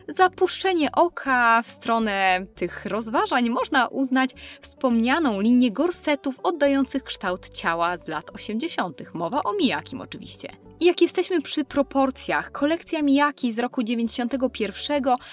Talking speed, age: 115 wpm, 20-39